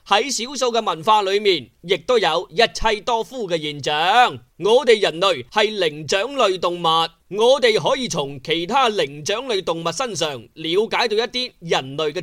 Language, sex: Chinese, male